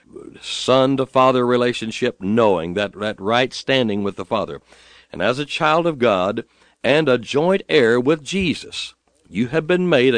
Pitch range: 110-160 Hz